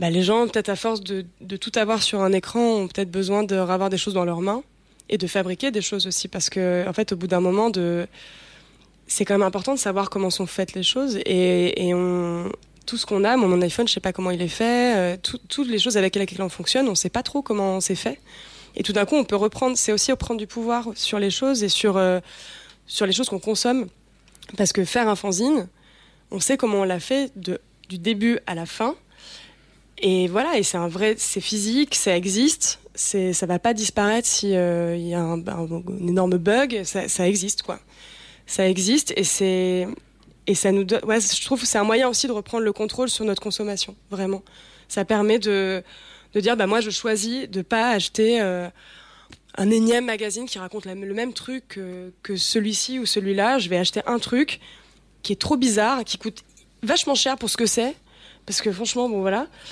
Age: 20-39